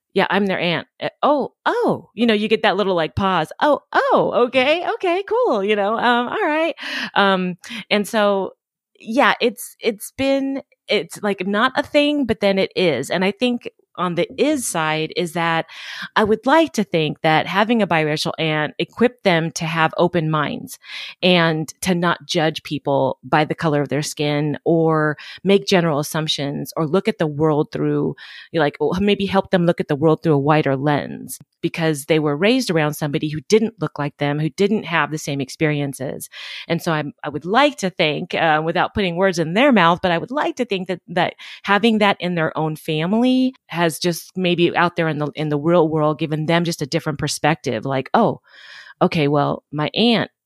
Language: English